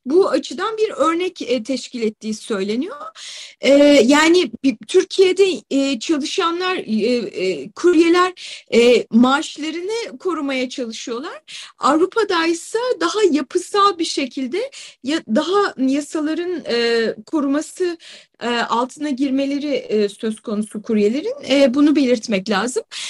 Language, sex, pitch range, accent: Turkish, female, 255-340 Hz, native